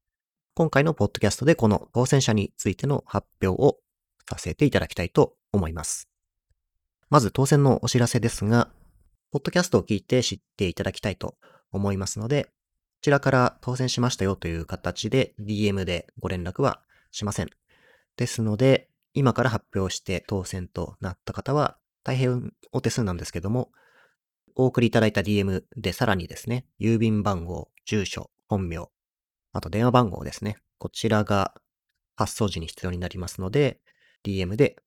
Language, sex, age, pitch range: Japanese, male, 30-49, 95-125 Hz